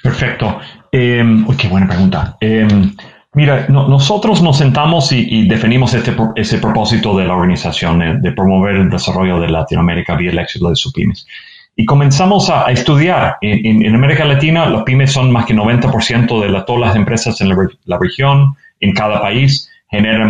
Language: Spanish